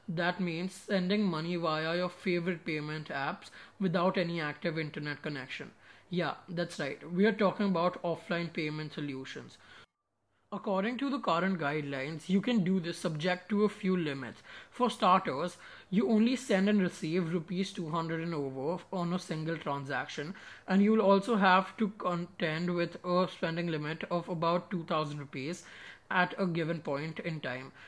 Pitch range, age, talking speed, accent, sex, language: 160-195 Hz, 20-39, 155 wpm, Indian, male, English